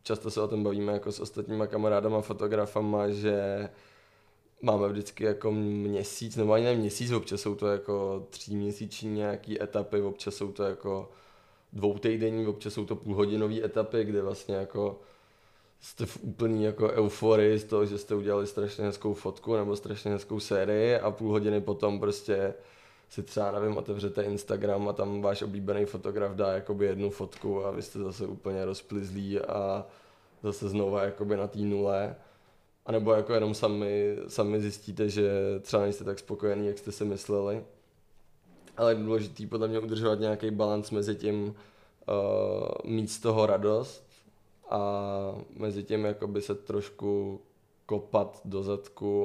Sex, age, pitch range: male, 20-39, 100-105 Hz